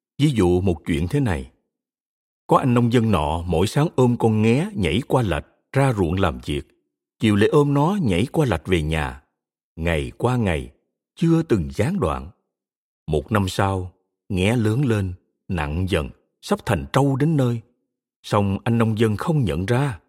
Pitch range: 90-140 Hz